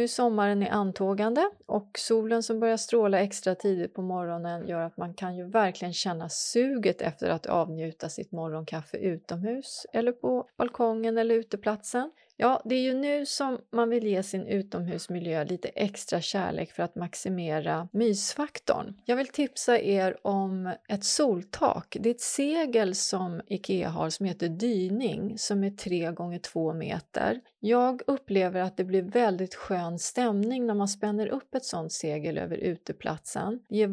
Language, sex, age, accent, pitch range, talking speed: English, female, 30-49, Swedish, 175-235 Hz, 160 wpm